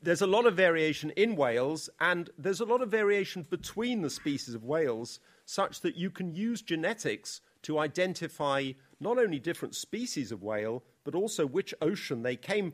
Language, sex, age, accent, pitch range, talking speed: English, male, 50-69, British, 125-170 Hz, 180 wpm